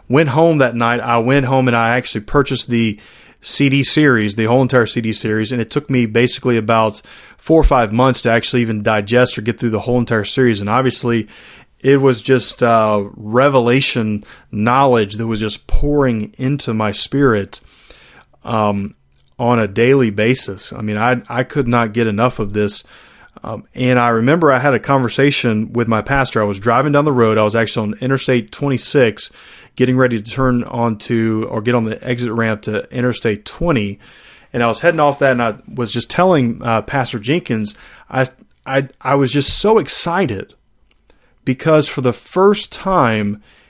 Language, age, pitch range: English, 30-49, 110-135 Hz